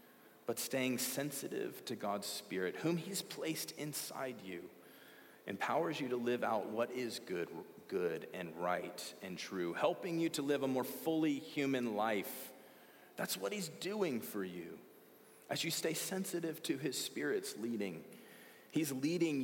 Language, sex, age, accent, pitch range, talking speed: English, male, 30-49, American, 120-160 Hz, 150 wpm